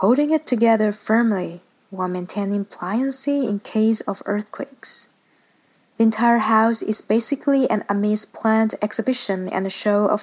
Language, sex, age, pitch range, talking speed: English, female, 20-39, 195-235 Hz, 140 wpm